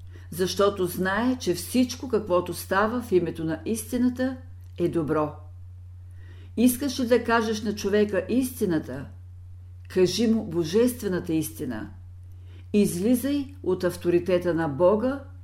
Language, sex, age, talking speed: Bulgarian, female, 50-69, 110 wpm